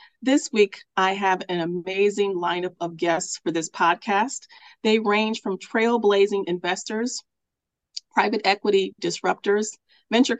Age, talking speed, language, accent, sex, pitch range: 40-59, 120 wpm, English, American, female, 185-225 Hz